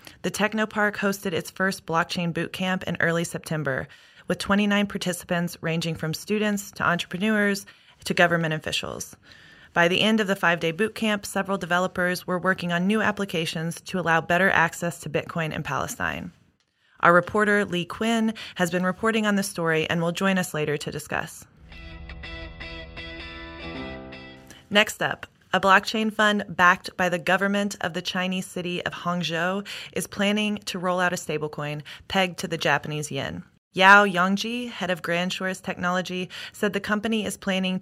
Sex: female